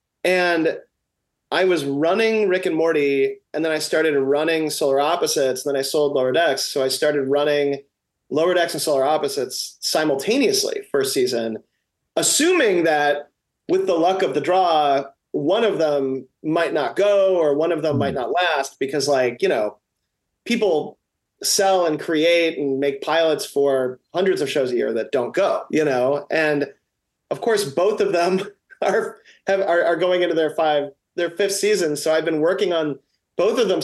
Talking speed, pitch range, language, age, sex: 175 wpm, 145-195 Hz, English, 30-49, male